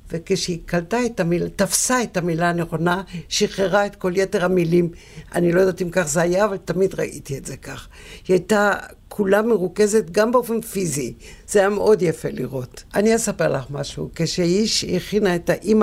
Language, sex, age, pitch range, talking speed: Hebrew, female, 60-79, 155-195 Hz, 180 wpm